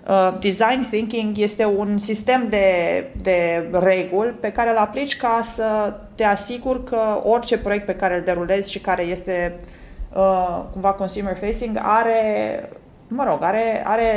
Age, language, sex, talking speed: 20-39, Romanian, female, 155 wpm